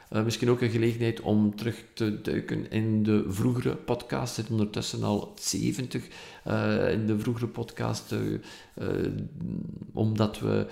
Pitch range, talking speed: 95-120 Hz, 150 wpm